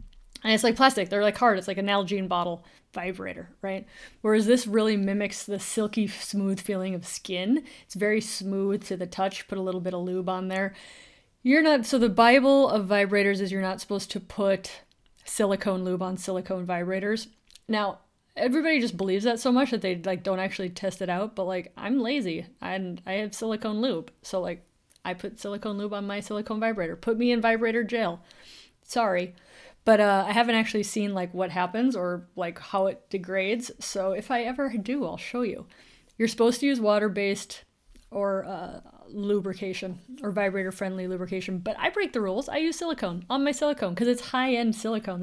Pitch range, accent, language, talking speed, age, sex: 190-230 Hz, American, English, 190 wpm, 30-49, female